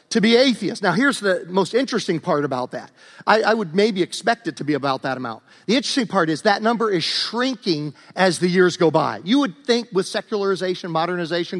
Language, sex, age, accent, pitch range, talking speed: English, male, 50-69, American, 180-235 Hz, 210 wpm